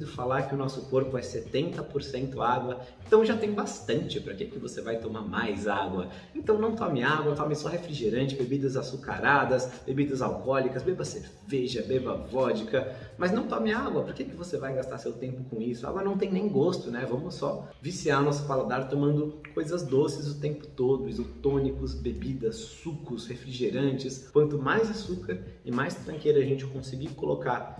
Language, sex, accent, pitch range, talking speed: Portuguese, male, Brazilian, 125-150 Hz, 175 wpm